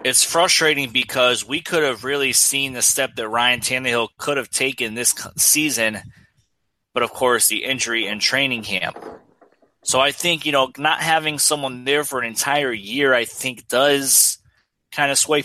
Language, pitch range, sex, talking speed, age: English, 125-150 Hz, male, 175 wpm, 20-39